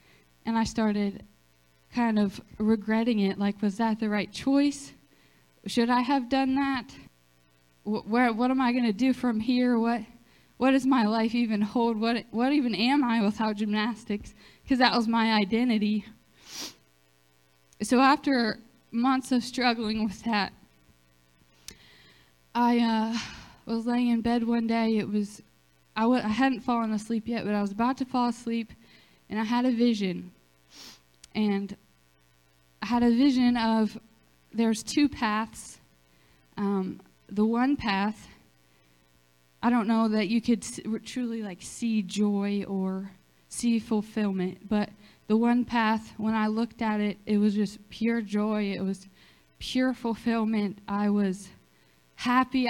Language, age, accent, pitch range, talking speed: English, 20-39, American, 200-235 Hz, 150 wpm